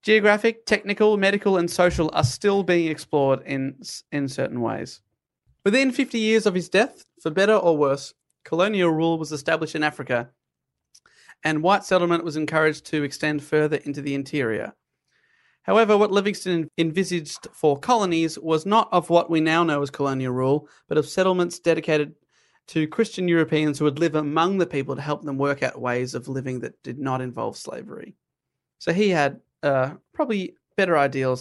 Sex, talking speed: male, 170 wpm